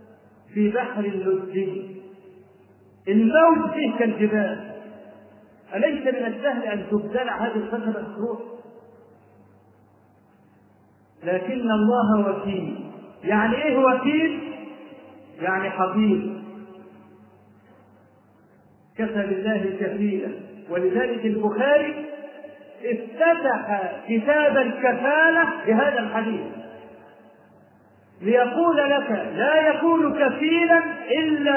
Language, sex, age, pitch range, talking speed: Arabic, male, 40-59, 200-265 Hz, 70 wpm